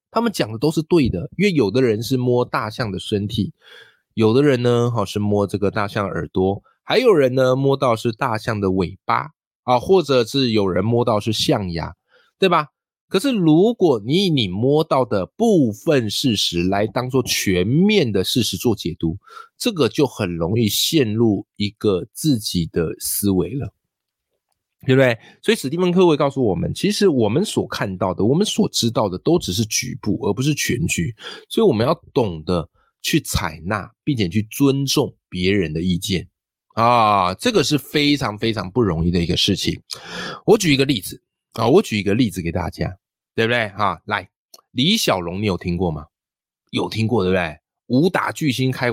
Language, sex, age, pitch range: Chinese, male, 20-39, 95-135 Hz